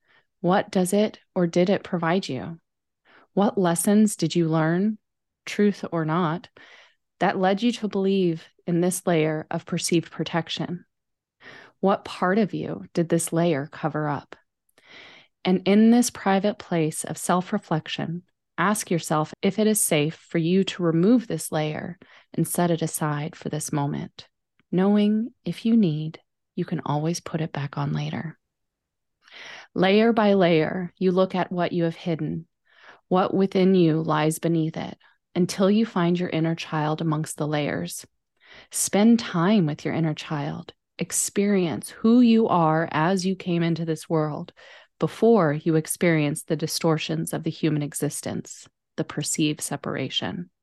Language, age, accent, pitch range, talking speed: English, 30-49, American, 155-190 Hz, 150 wpm